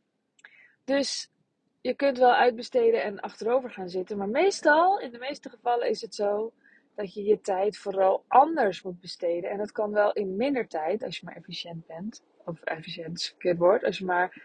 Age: 20-39